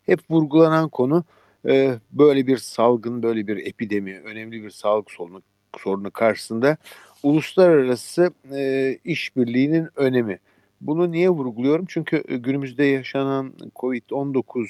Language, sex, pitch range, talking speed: Turkish, male, 120-150 Hz, 100 wpm